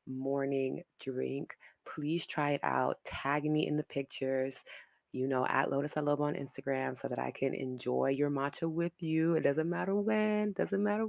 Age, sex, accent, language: 20-39, female, American, English